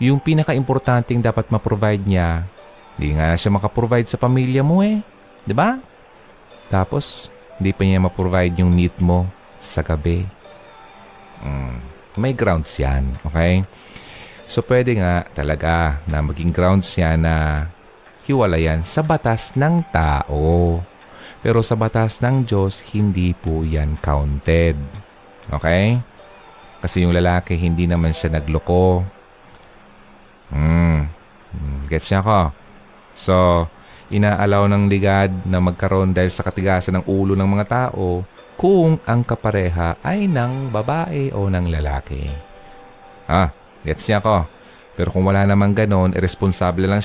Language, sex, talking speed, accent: Filipino, male, 125 wpm, native